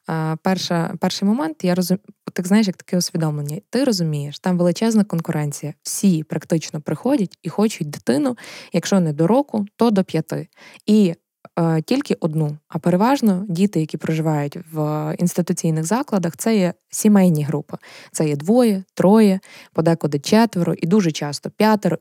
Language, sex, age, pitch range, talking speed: Ukrainian, female, 20-39, 160-200 Hz, 140 wpm